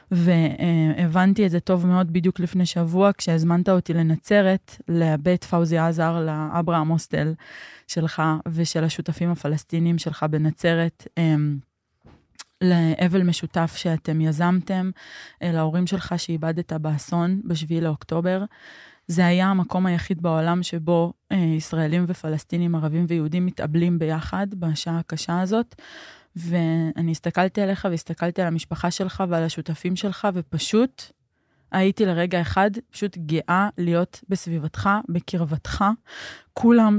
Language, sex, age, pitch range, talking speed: Hebrew, female, 20-39, 165-185 Hz, 110 wpm